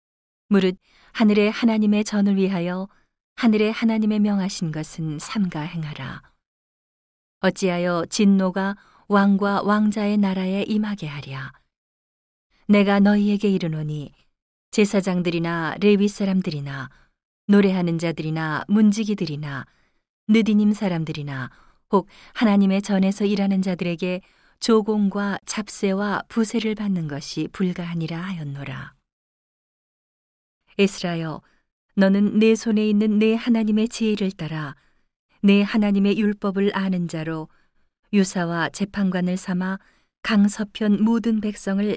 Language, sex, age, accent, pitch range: Korean, female, 40-59, native, 170-210 Hz